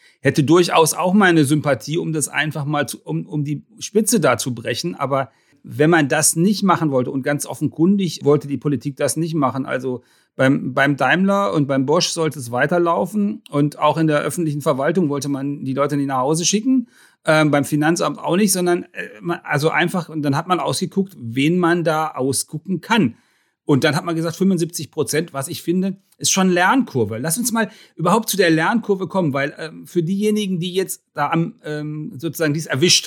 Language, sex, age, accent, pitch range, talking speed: German, male, 40-59, German, 140-175 Hz, 195 wpm